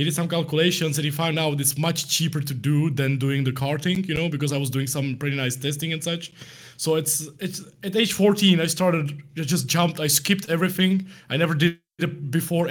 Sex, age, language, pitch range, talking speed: male, 20-39, English, 140-170 Hz, 220 wpm